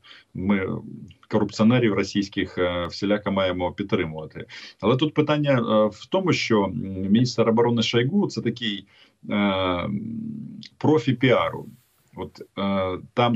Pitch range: 95-120 Hz